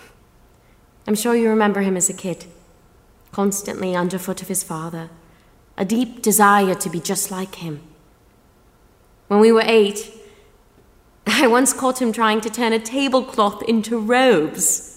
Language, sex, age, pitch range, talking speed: English, female, 30-49, 180-235 Hz, 145 wpm